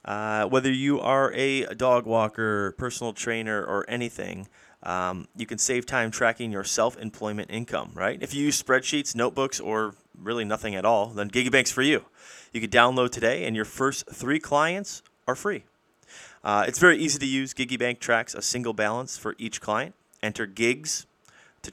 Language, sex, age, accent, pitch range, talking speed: English, male, 30-49, American, 105-125 Hz, 175 wpm